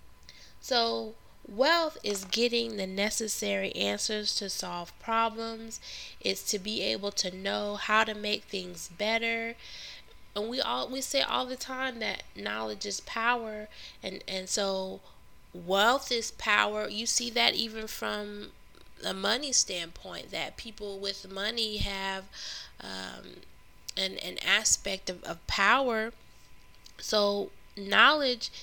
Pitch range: 180-225 Hz